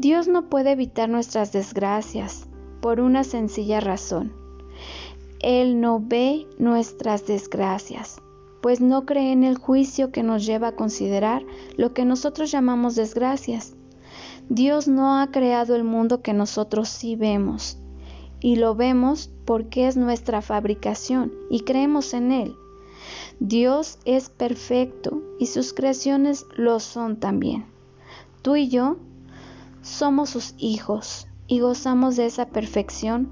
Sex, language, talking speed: female, Spanish, 130 wpm